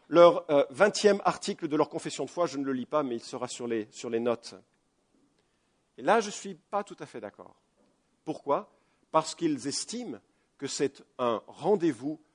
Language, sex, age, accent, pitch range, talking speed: English, male, 50-69, French, 150-215 Hz, 190 wpm